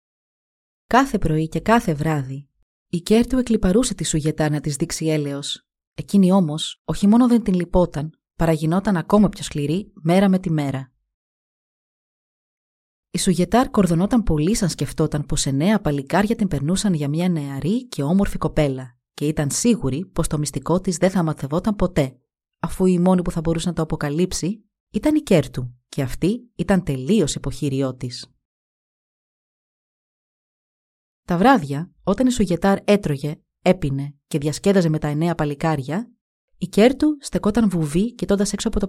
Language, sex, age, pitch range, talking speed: Greek, female, 30-49, 145-195 Hz, 150 wpm